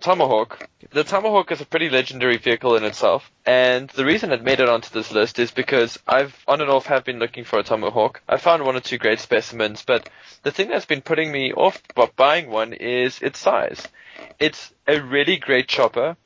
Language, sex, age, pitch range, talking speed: English, male, 20-39, 120-155 Hz, 205 wpm